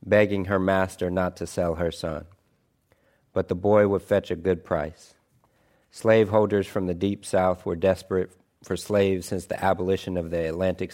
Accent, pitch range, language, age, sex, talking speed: American, 90-100 Hz, English, 50-69, male, 170 wpm